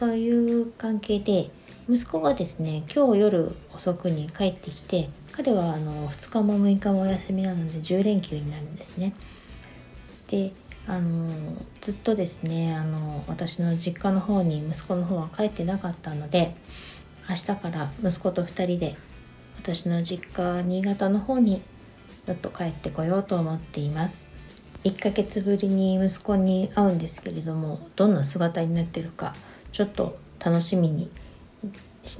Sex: female